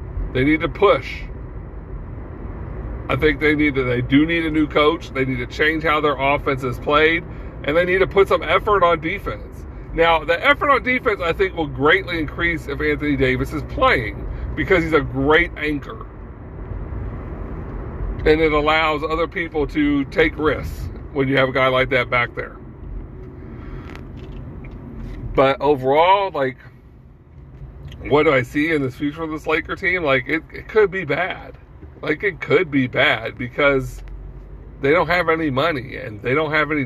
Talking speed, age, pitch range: 175 wpm, 40-59, 130-160 Hz